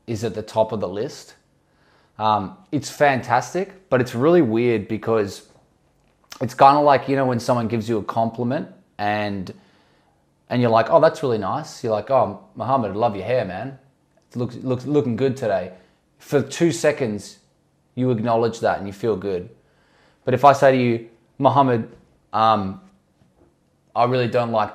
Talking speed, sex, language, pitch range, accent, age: 170 wpm, male, English, 110-135 Hz, Australian, 20-39